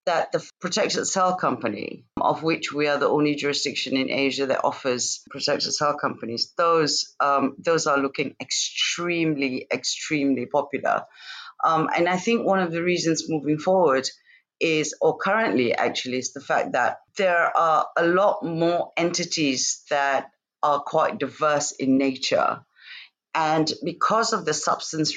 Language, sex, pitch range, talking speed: English, female, 140-175 Hz, 150 wpm